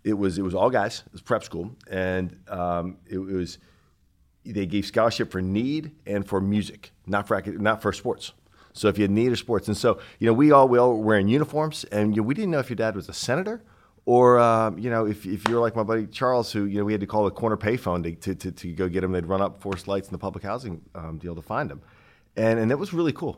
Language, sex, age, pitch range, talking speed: English, male, 40-59, 90-110 Hz, 270 wpm